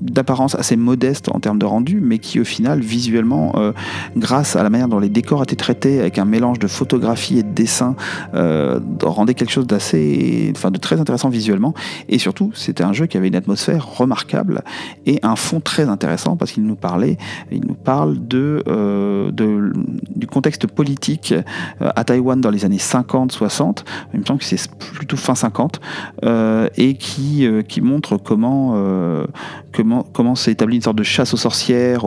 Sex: male